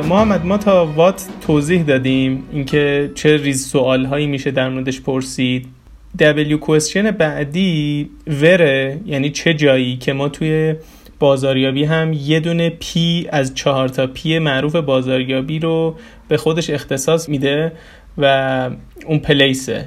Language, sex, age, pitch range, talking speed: Persian, male, 30-49, 135-170 Hz, 135 wpm